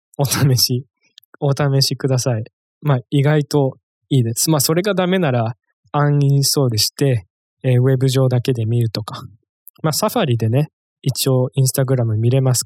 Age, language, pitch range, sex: 20-39, Japanese, 120-150 Hz, male